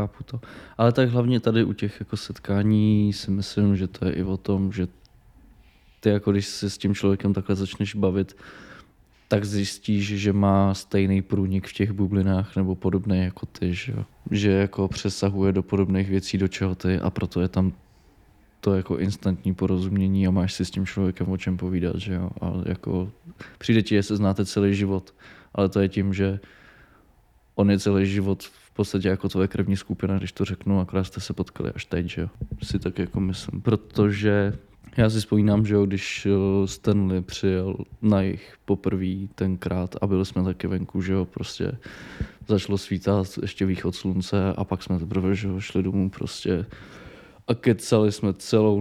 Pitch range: 95-105 Hz